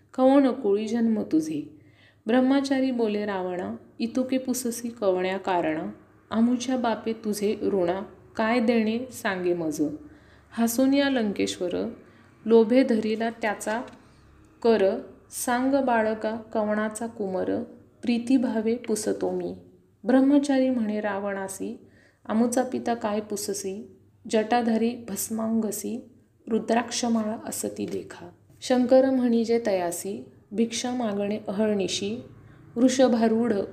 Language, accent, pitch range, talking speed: Marathi, native, 190-240 Hz, 90 wpm